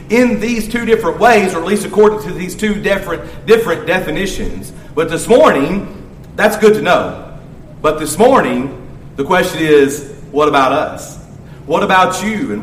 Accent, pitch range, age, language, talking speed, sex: American, 165-220 Hz, 40-59, English, 165 wpm, male